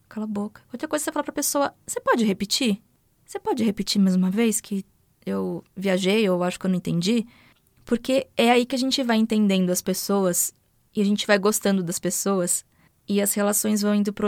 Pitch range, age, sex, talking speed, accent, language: 195-235 Hz, 20-39, female, 210 wpm, Brazilian, Portuguese